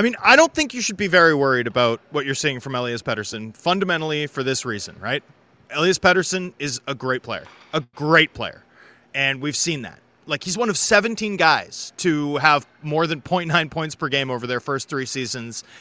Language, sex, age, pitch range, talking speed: English, male, 30-49, 140-190 Hz, 205 wpm